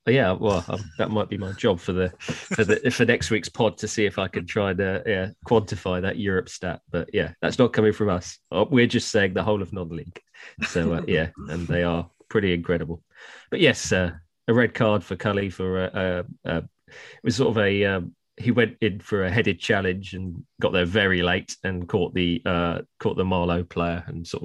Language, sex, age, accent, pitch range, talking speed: English, male, 30-49, British, 90-125 Hz, 225 wpm